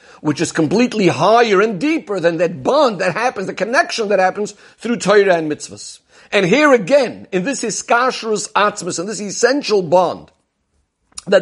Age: 50-69